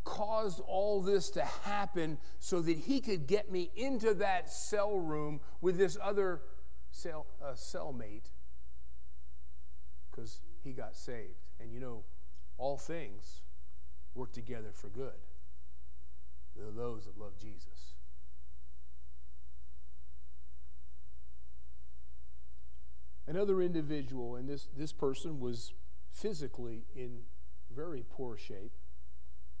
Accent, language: American, English